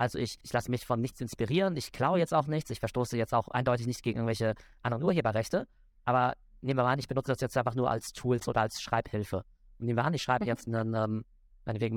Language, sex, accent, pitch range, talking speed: German, male, German, 115-140 Hz, 235 wpm